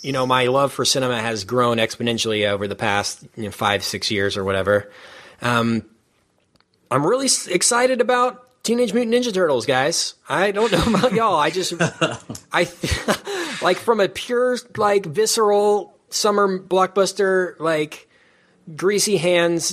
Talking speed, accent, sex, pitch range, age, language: 150 wpm, American, male, 120-175 Hz, 30-49, English